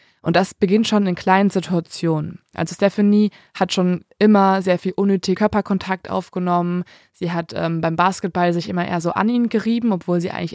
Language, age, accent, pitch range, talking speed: German, 20-39, German, 175-215 Hz, 180 wpm